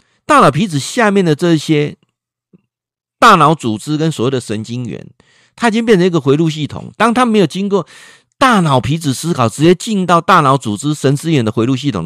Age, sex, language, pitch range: 50-69, male, Chinese, 115-165 Hz